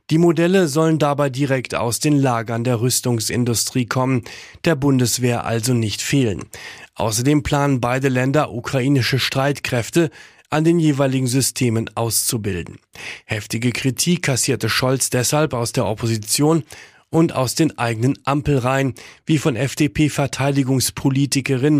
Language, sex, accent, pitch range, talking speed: German, male, German, 120-150 Hz, 120 wpm